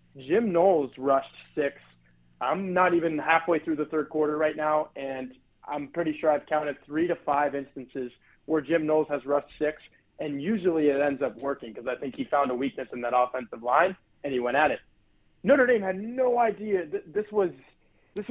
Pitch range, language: 135-175 Hz, English